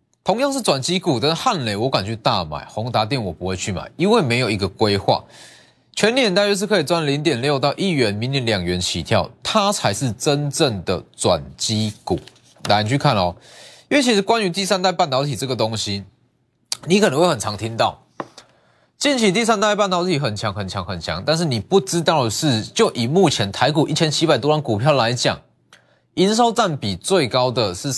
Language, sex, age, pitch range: Chinese, male, 20-39, 115-190 Hz